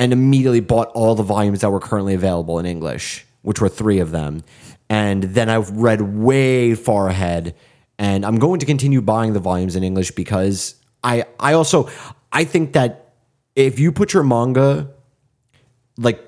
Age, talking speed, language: 30-49, 175 wpm, English